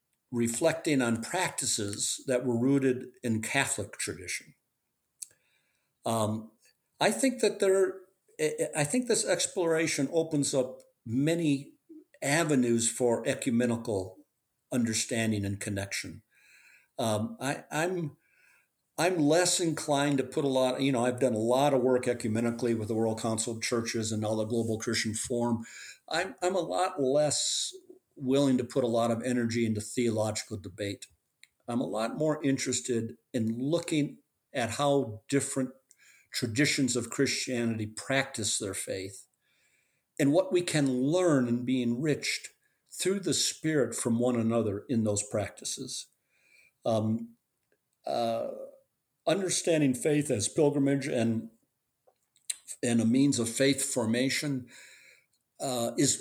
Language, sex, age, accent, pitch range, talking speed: English, male, 50-69, American, 115-150 Hz, 130 wpm